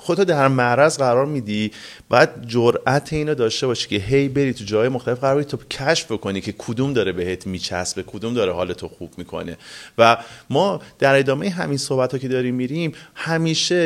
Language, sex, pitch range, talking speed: Persian, male, 115-155 Hz, 180 wpm